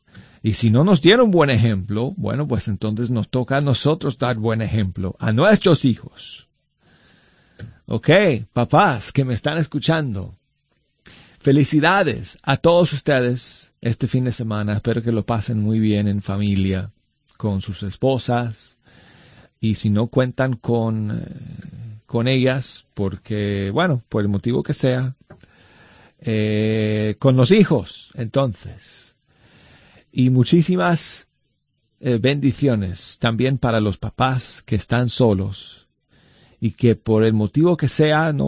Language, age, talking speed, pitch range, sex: Spanish, 40-59, 130 wpm, 105-135 Hz, male